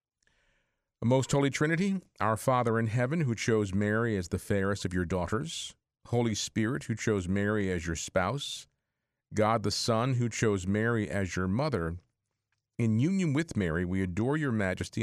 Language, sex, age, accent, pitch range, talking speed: English, male, 50-69, American, 95-125 Hz, 165 wpm